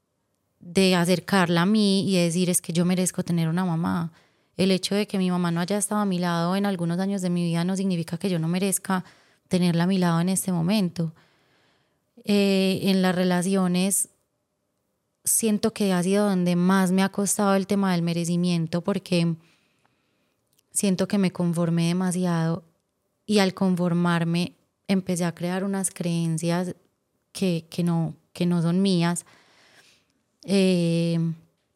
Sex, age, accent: female, 20-39, Colombian